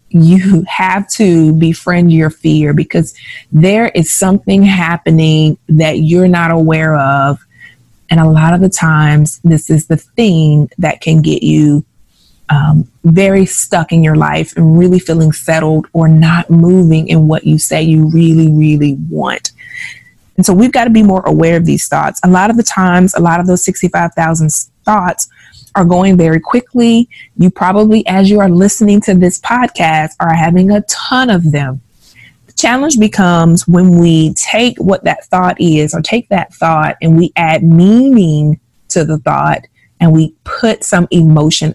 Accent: American